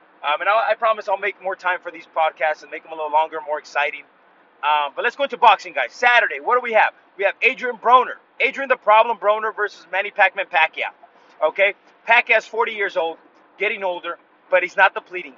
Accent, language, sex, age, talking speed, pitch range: American, English, male, 30-49, 210 wpm, 175-220 Hz